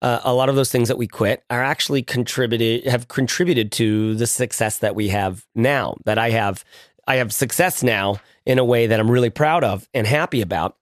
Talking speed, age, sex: 215 wpm, 30-49, male